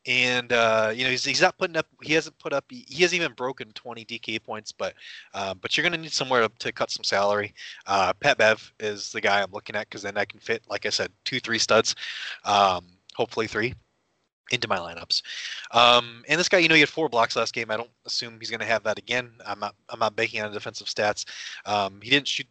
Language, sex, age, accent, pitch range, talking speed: English, male, 20-39, American, 105-135 Hz, 250 wpm